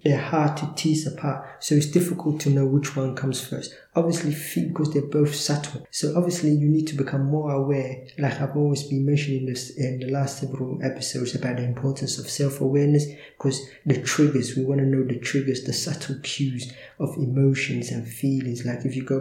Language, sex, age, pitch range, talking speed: English, male, 20-39, 130-145 Hz, 195 wpm